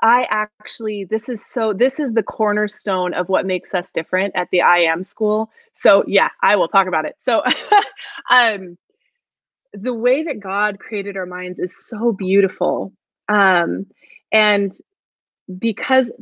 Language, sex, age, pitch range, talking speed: English, female, 20-39, 195-255 Hz, 150 wpm